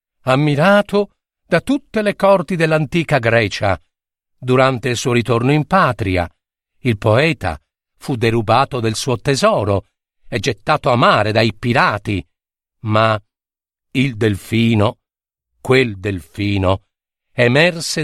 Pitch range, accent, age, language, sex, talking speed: 100-155 Hz, native, 50-69, Italian, male, 105 wpm